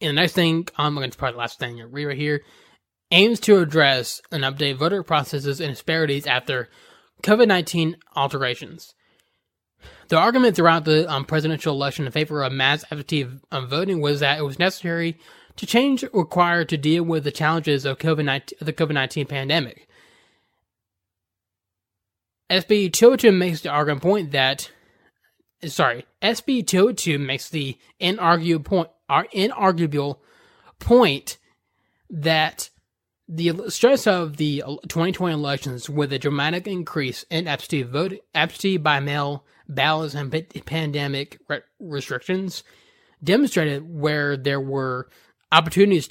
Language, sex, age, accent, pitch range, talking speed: English, male, 20-39, American, 140-180 Hz, 135 wpm